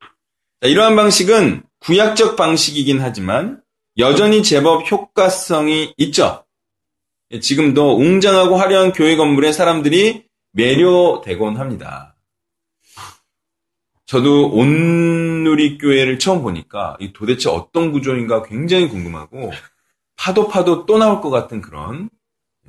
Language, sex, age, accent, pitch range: Korean, male, 40-59, native, 130-190 Hz